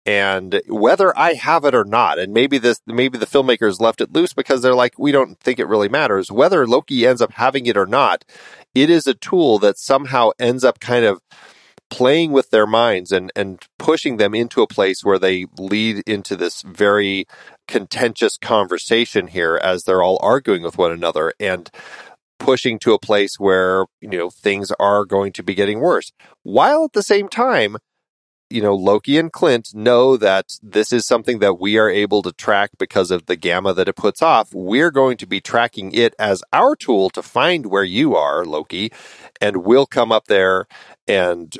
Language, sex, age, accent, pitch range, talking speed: English, male, 40-59, American, 100-130 Hz, 195 wpm